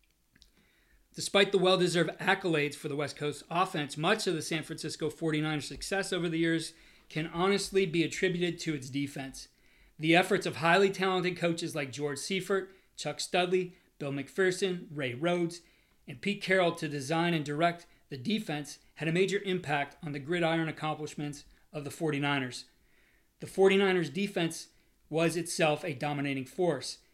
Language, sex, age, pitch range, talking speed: English, male, 40-59, 150-180 Hz, 155 wpm